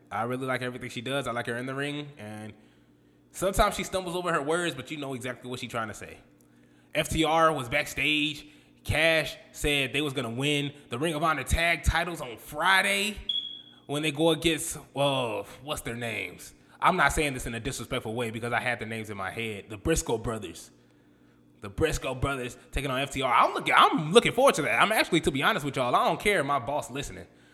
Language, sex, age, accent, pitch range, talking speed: English, male, 20-39, American, 105-165 Hz, 220 wpm